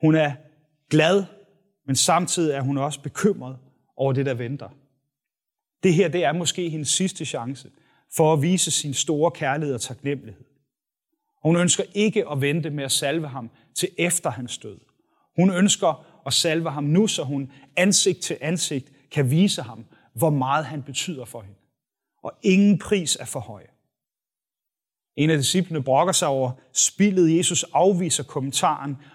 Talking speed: 160 wpm